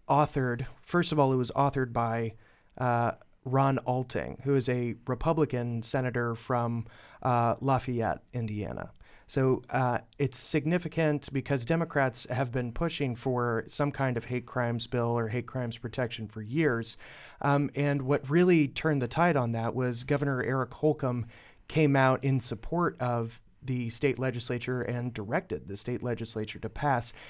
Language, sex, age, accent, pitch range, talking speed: English, male, 30-49, American, 115-135 Hz, 155 wpm